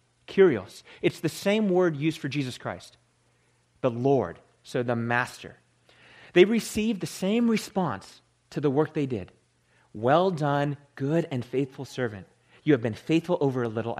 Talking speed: 160 wpm